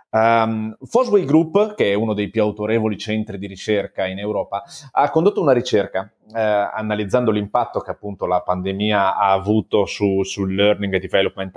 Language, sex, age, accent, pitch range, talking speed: Italian, male, 30-49, native, 100-120 Hz, 155 wpm